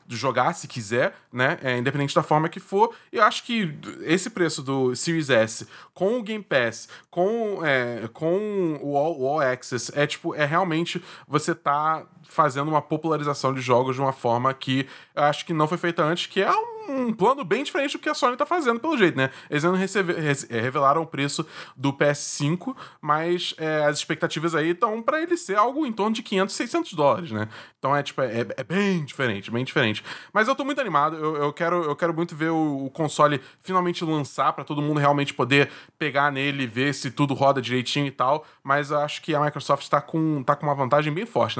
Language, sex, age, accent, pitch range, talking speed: Portuguese, male, 20-39, Brazilian, 140-200 Hz, 210 wpm